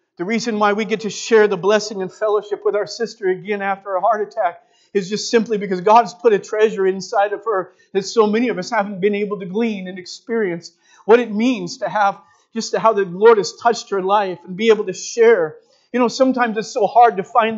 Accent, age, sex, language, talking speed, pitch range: American, 40-59, male, English, 235 wpm, 180-230 Hz